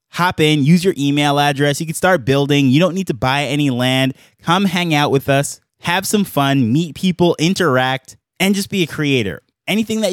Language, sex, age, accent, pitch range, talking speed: English, male, 20-39, American, 130-165 Hz, 205 wpm